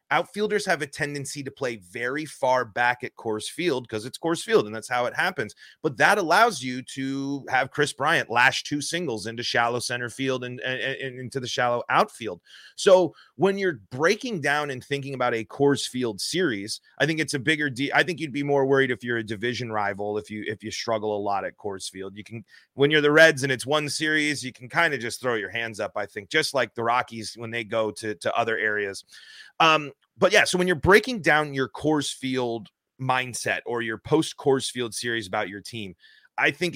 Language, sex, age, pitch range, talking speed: English, male, 30-49, 120-155 Hz, 225 wpm